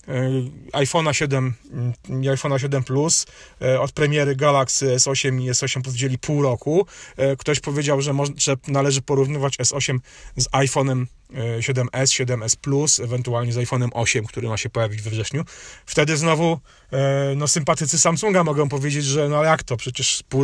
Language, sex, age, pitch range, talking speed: Polish, male, 30-49, 130-155 Hz, 145 wpm